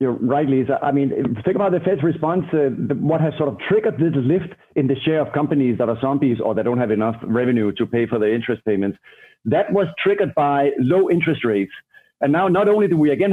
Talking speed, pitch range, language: 235 wpm, 135-170 Hz, English